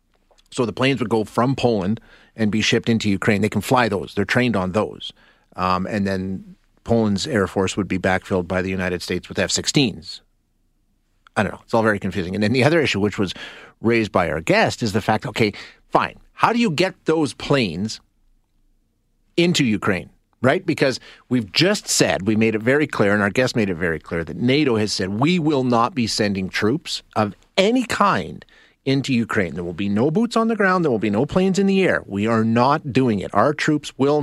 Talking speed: 215 wpm